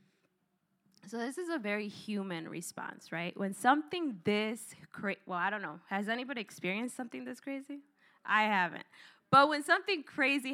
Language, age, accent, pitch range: English, 10-29, American, 205-275 Hz